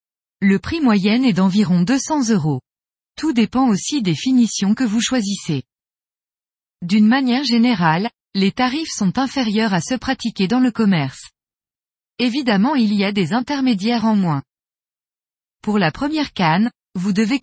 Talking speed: 145 wpm